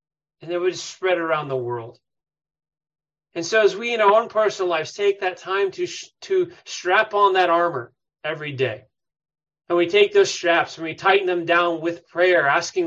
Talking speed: 185 wpm